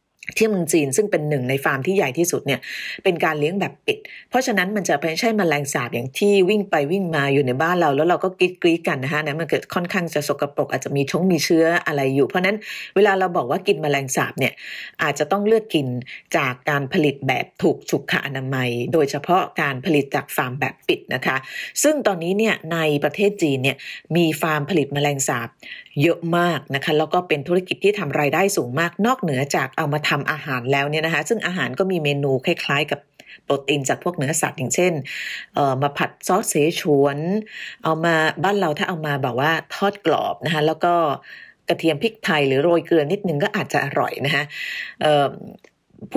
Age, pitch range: 30-49, 145-190 Hz